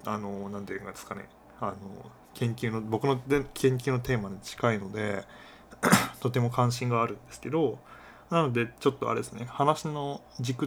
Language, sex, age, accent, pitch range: Japanese, male, 20-39, native, 105-130 Hz